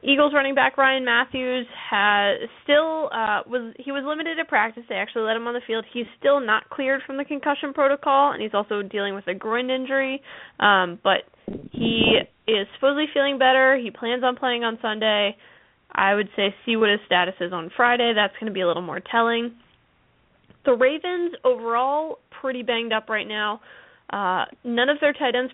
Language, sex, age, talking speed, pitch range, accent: English, female, 10-29, 190 wpm, 205-260 Hz, American